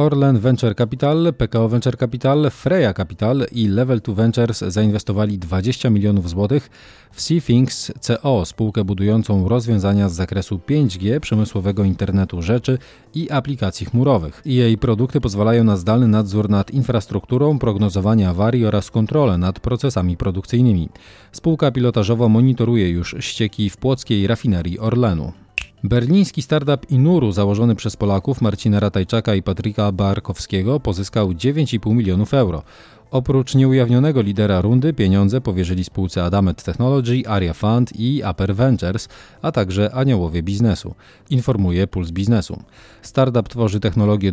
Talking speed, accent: 125 wpm, native